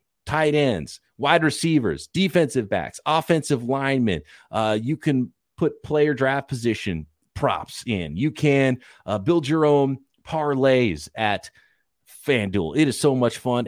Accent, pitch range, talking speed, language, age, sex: American, 120-175 Hz, 135 wpm, English, 40-59, male